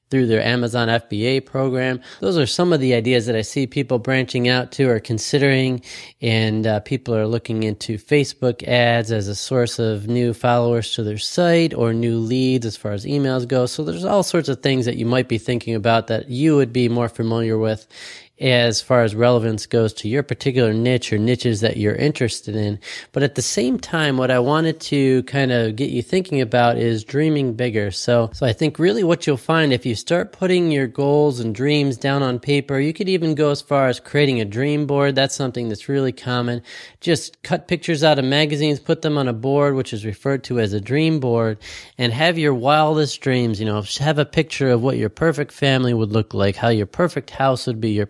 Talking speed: 220 wpm